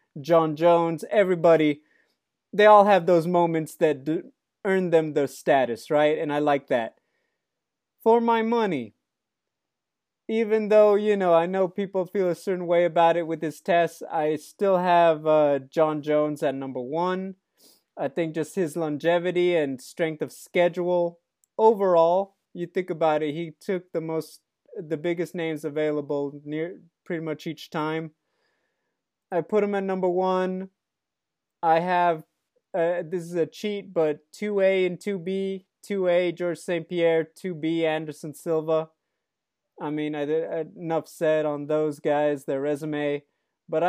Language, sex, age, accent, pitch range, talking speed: English, male, 20-39, American, 150-185 Hz, 150 wpm